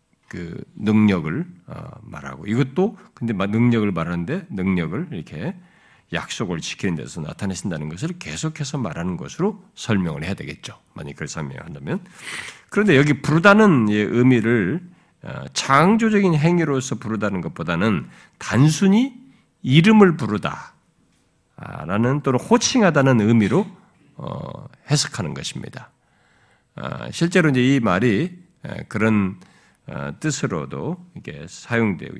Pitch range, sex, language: 115-180 Hz, male, Korean